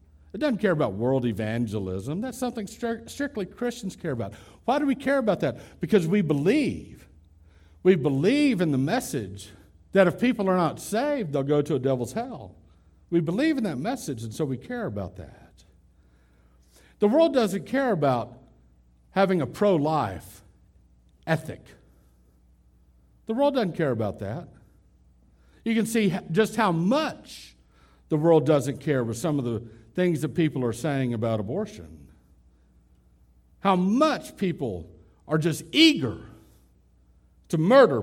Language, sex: English, male